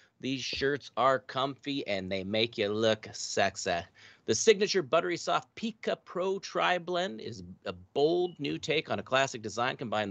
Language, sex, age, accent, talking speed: English, male, 40-59, American, 160 wpm